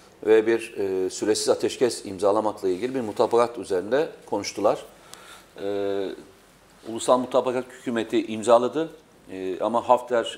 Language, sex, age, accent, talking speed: Turkish, male, 40-59, native, 110 wpm